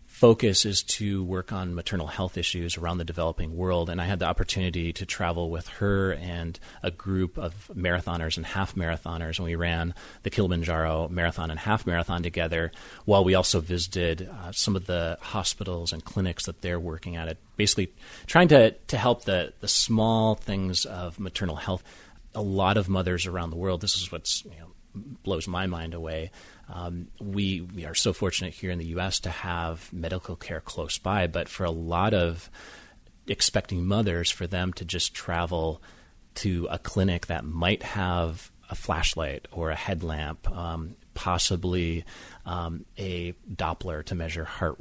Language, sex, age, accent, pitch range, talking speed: English, male, 30-49, American, 85-95 Hz, 170 wpm